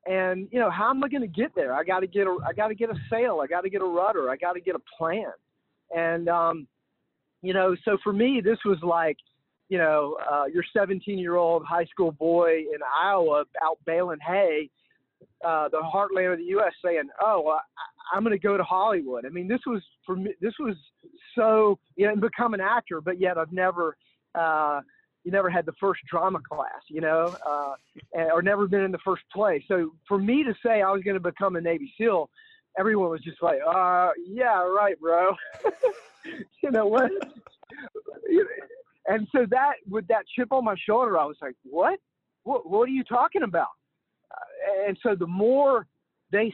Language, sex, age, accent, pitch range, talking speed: English, male, 40-59, American, 170-225 Hz, 205 wpm